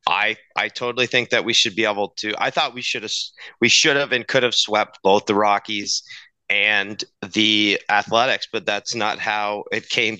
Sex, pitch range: male, 105-120 Hz